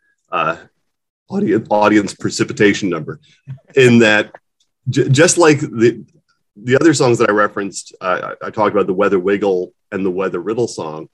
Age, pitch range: 30-49, 105-145 Hz